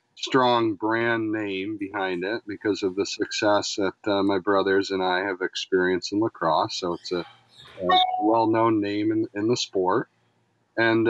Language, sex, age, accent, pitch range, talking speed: English, male, 40-59, American, 105-125 Hz, 160 wpm